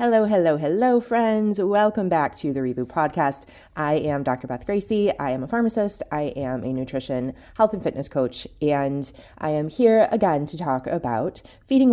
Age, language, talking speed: 20-39, English, 180 wpm